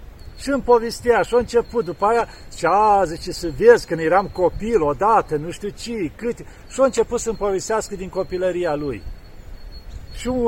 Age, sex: 50-69, male